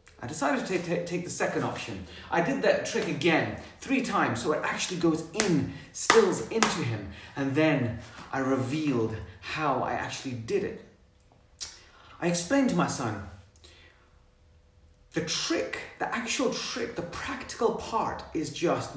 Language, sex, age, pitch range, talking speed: English, male, 30-49, 90-150 Hz, 150 wpm